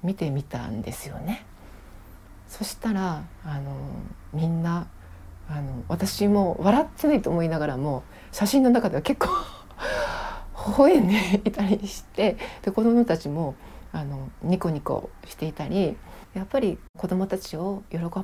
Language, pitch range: Japanese, 150-220 Hz